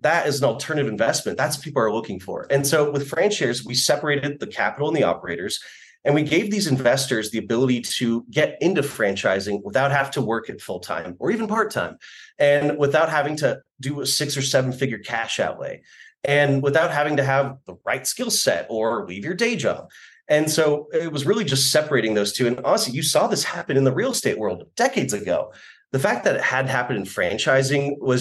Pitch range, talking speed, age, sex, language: 130-160 Hz, 215 wpm, 30-49, male, English